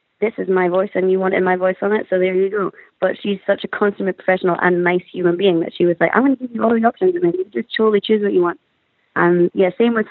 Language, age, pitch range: English, 20-39, 175-195 Hz